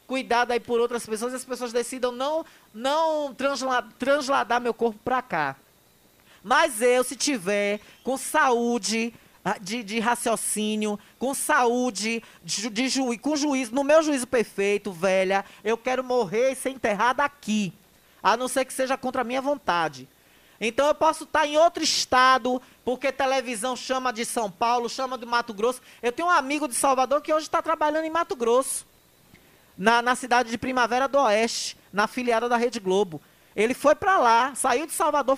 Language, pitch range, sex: Portuguese, 220-280 Hz, male